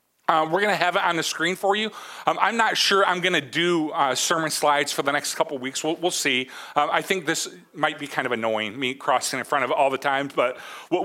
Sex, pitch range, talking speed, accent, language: male, 140-175 Hz, 275 wpm, American, English